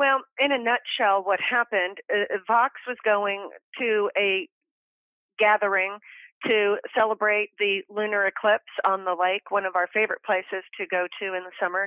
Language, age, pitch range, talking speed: English, 40-59, 195-235 Hz, 155 wpm